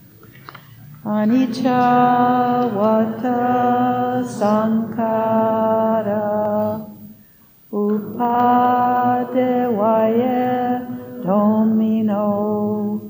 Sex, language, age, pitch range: female, English, 60-79, 210-245 Hz